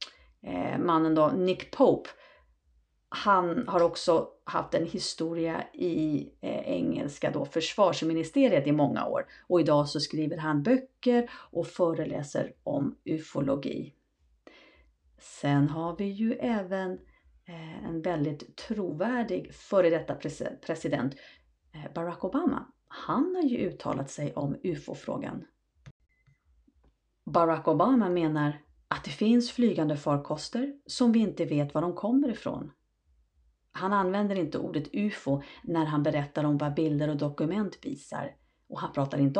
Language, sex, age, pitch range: Swedish, female, 40-59, 150-210 Hz